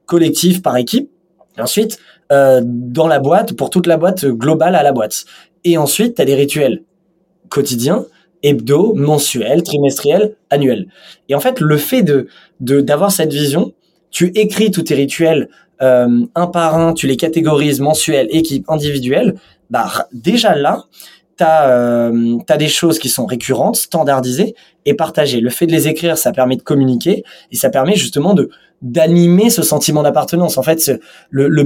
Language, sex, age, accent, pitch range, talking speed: French, male, 20-39, French, 130-170 Hz, 170 wpm